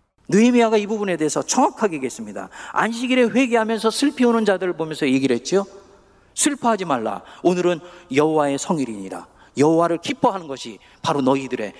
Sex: male